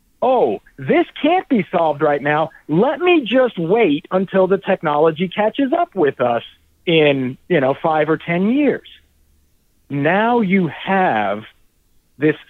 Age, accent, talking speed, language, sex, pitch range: 50-69, American, 140 wpm, English, male, 155-225 Hz